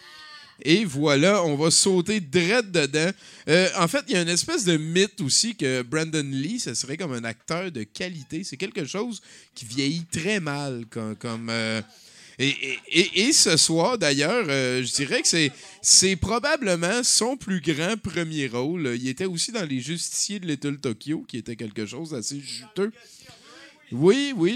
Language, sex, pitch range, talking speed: French, male, 135-195 Hz, 180 wpm